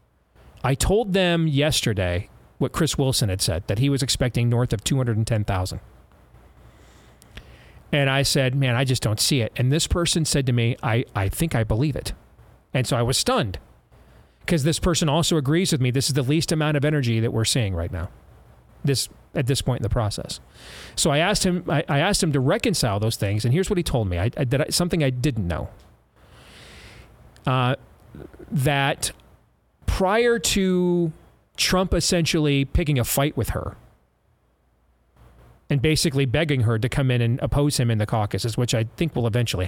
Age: 40-59